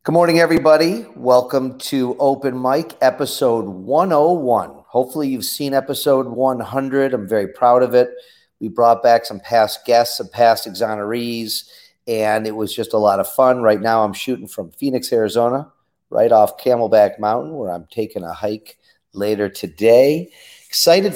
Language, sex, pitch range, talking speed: English, male, 115-140 Hz, 155 wpm